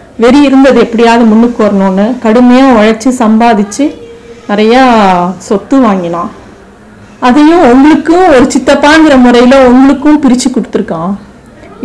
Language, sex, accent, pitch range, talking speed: Tamil, female, native, 220-265 Hz, 95 wpm